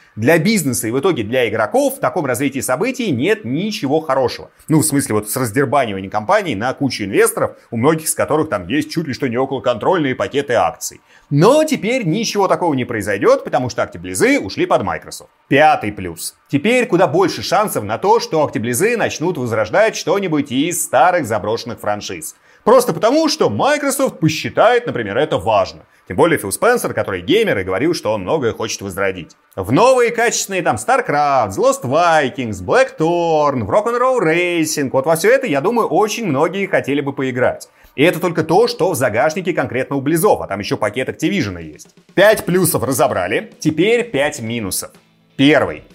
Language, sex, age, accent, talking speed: Russian, male, 30-49, native, 170 wpm